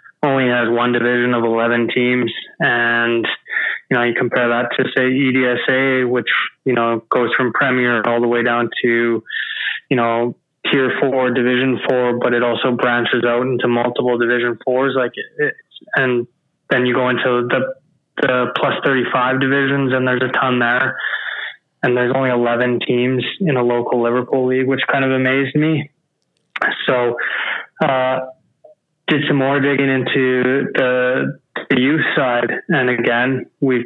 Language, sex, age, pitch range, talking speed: English, male, 20-39, 120-135 Hz, 155 wpm